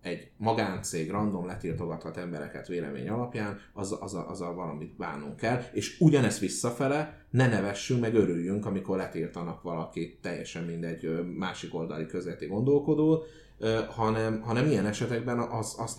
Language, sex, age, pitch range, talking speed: Hungarian, male, 30-49, 95-120 Hz, 135 wpm